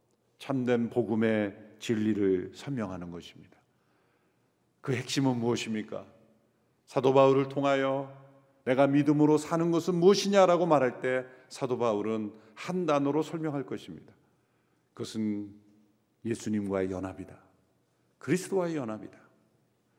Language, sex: Korean, male